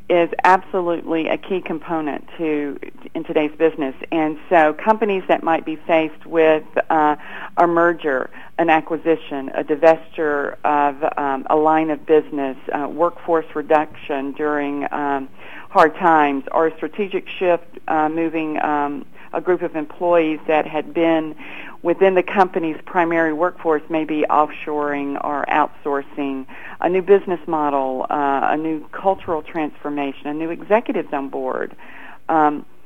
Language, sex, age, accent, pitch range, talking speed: English, female, 50-69, American, 150-175 Hz, 140 wpm